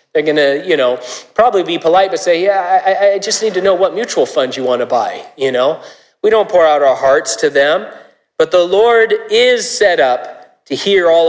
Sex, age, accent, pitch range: male, 40-59, American, 140-200 Hz